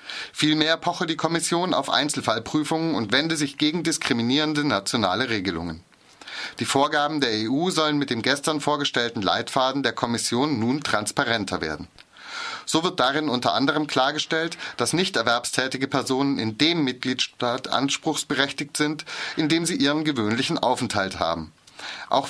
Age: 30-49